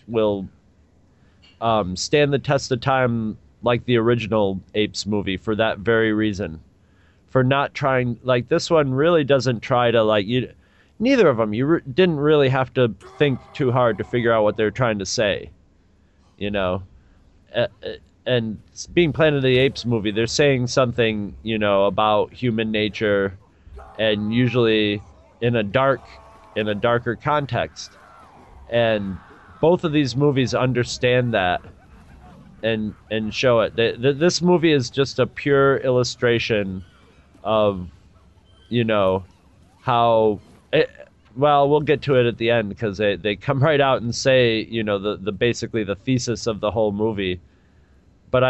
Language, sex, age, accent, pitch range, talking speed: English, male, 30-49, American, 100-125 Hz, 155 wpm